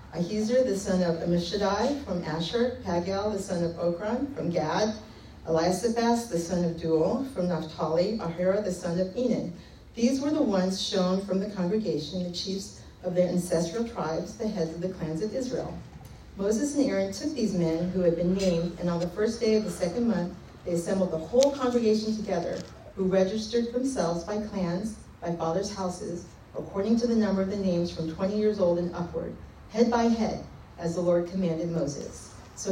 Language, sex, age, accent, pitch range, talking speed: English, female, 40-59, American, 170-215 Hz, 185 wpm